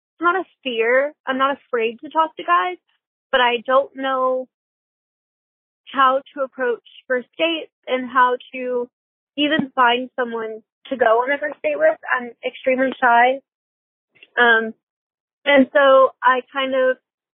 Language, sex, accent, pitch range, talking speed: English, female, American, 250-295 Hz, 140 wpm